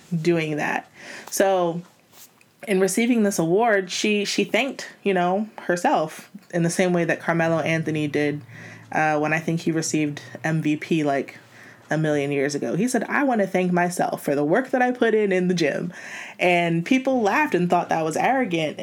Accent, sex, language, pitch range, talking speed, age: American, female, English, 155-200 Hz, 185 wpm, 20-39